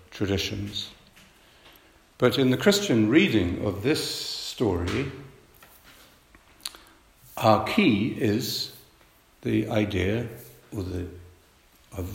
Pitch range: 95-115 Hz